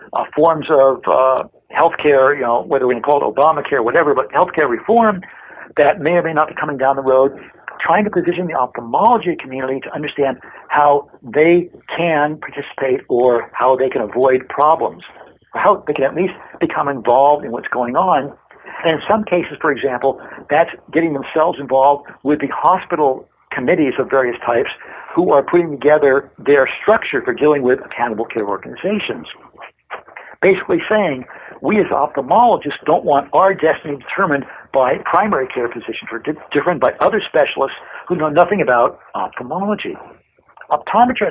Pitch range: 135-175 Hz